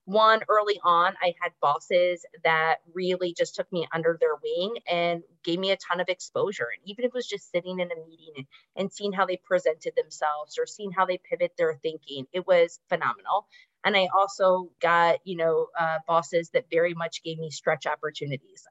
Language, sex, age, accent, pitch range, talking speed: English, female, 30-49, American, 165-250 Hz, 200 wpm